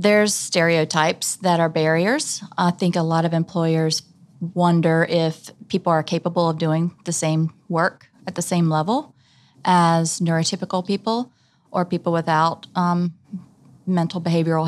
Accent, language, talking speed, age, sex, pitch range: American, English, 140 wpm, 30-49, female, 155-175 Hz